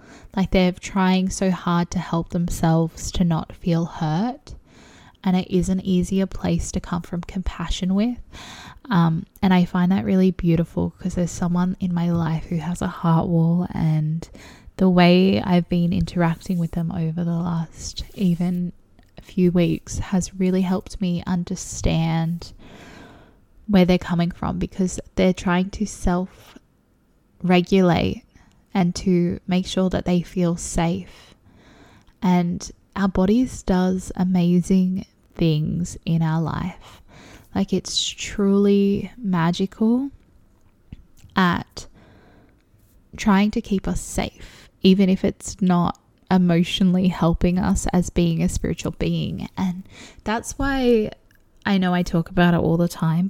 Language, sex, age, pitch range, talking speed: English, female, 10-29, 170-190 Hz, 135 wpm